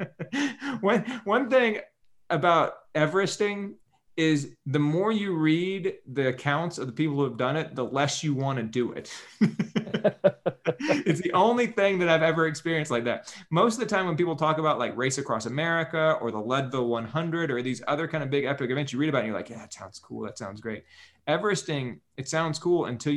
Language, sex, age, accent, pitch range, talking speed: English, male, 30-49, American, 125-160 Hz, 205 wpm